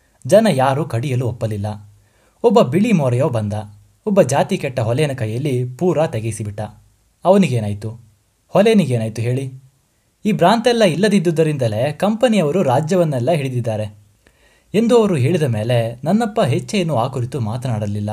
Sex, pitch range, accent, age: male, 110-175 Hz, native, 20-39